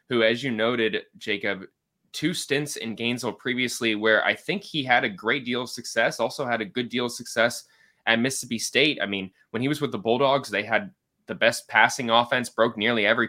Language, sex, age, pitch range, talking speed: English, male, 20-39, 110-125 Hz, 210 wpm